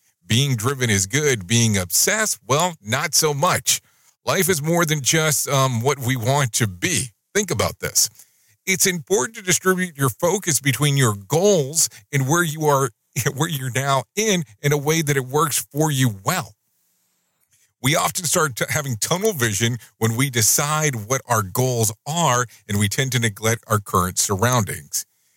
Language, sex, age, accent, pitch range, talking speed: English, male, 50-69, American, 115-160 Hz, 170 wpm